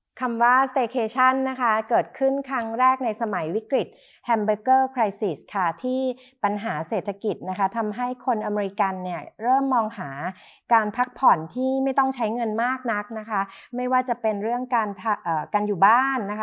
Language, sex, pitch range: Thai, female, 200-250 Hz